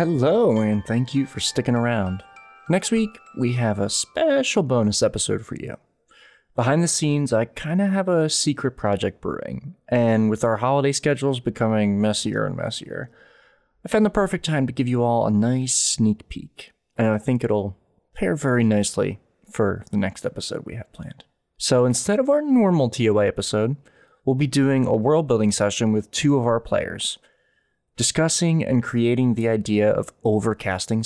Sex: male